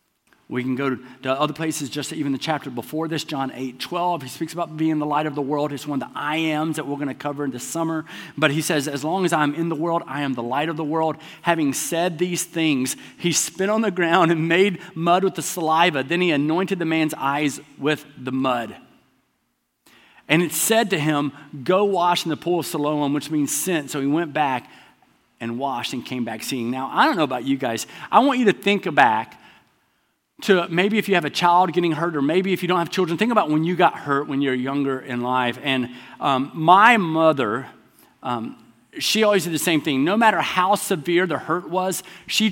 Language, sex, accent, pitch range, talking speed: English, male, American, 145-185 Hz, 230 wpm